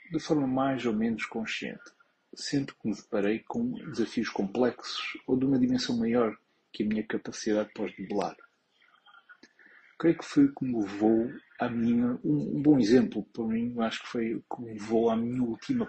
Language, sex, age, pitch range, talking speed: Portuguese, male, 40-59, 110-135 Hz, 180 wpm